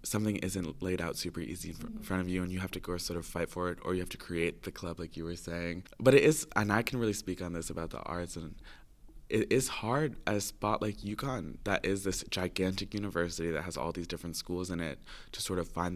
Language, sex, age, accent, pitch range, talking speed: English, male, 20-39, American, 85-95 Hz, 260 wpm